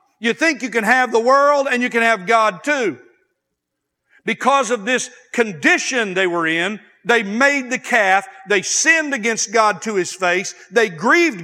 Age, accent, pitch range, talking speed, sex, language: 50-69, American, 160-245 Hz, 175 wpm, male, English